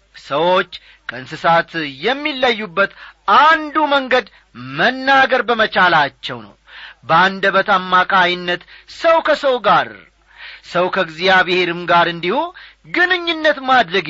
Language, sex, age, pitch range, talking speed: Amharic, male, 40-59, 165-250 Hz, 80 wpm